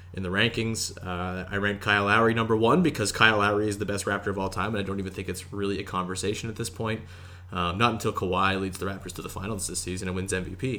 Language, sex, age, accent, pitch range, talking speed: English, male, 20-39, American, 95-115 Hz, 260 wpm